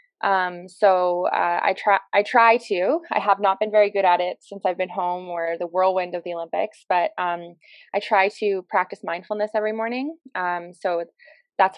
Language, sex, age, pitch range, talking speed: English, female, 20-39, 175-210 Hz, 195 wpm